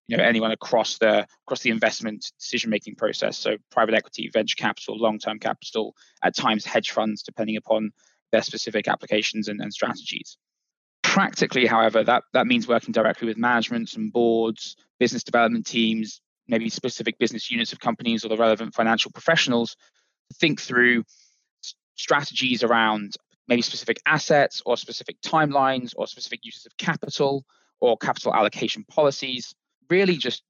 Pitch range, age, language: 110-135 Hz, 20-39, English